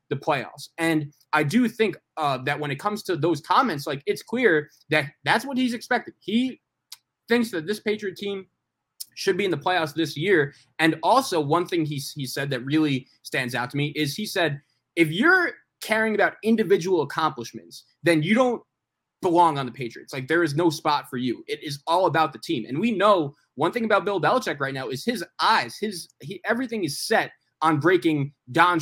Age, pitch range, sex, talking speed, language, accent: 20-39, 145-195 Hz, male, 205 wpm, English, American